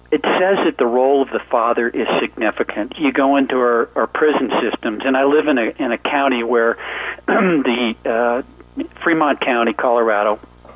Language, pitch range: English, 110-140 Hz